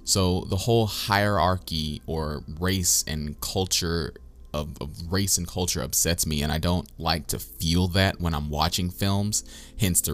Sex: male